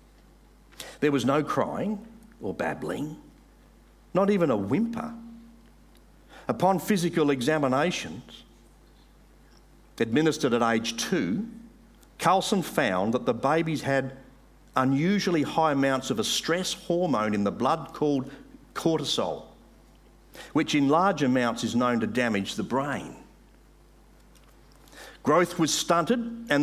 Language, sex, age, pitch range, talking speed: English, male, 50-69, 135-185 Hz, 110 wpm